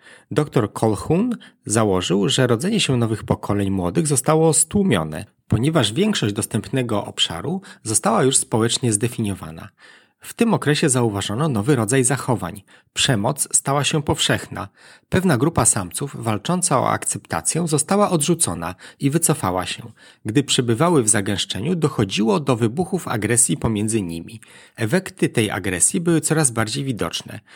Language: Polish